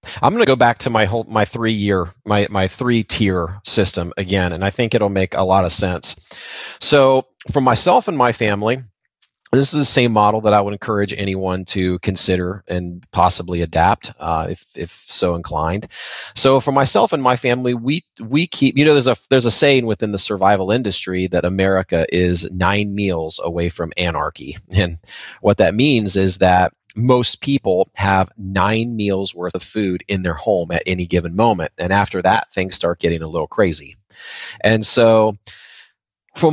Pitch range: 95-125 Hz